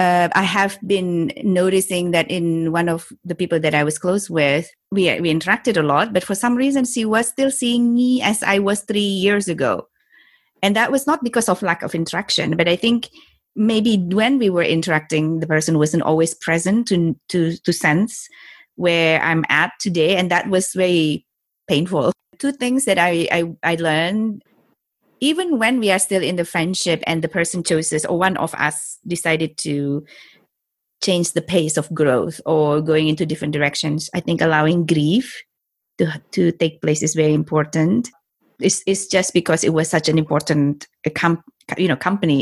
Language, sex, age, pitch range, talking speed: English, female, 30-49, 155-195 Hz, 180 wpm